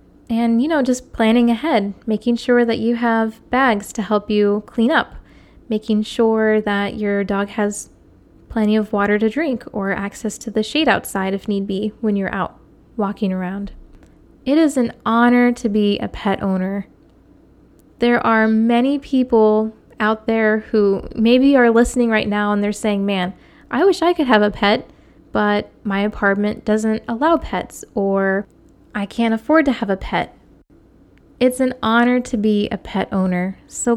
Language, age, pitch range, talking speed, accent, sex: English, 10-29, 210-250 Hz, 170 wpm, American, female